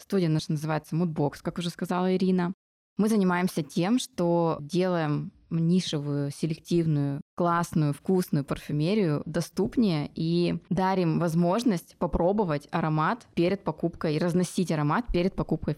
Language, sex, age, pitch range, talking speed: Russian, female, 20-39, 155-190 Hz, 115 wpm